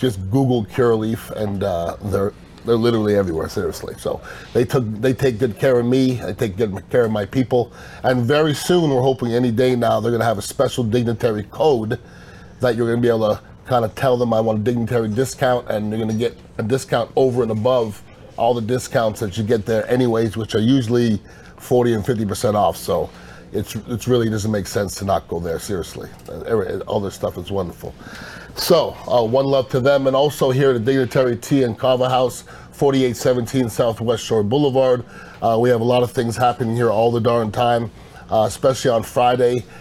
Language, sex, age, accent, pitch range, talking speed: English, male, 30-49, American, 110-130 Hz, 205 wpm